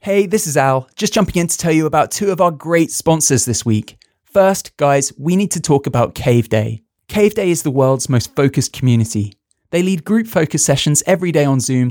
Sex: male